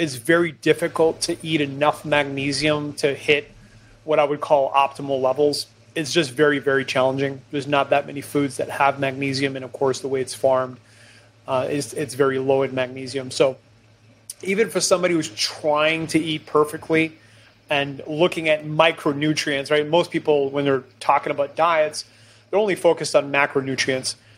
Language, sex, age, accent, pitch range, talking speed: English, male, 30-49, American, 130-155 Hz, 165 wpm